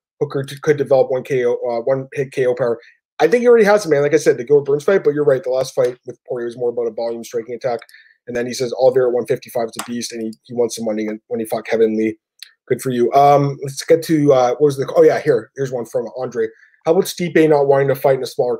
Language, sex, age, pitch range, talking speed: English, male, 20-39, 130-215 Hz, 290 wpm